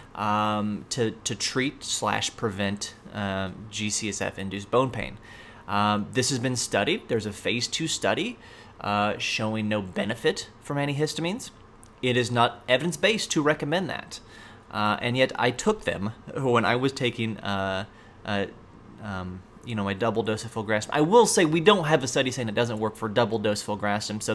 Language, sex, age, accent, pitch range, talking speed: English, male, 30-49, American, 105-130 Hz, 175 wpm